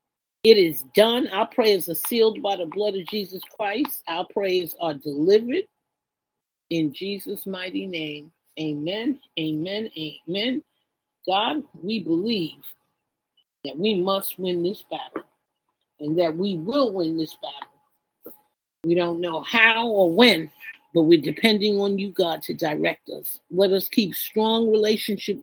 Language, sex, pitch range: English, female, 175-230 Hz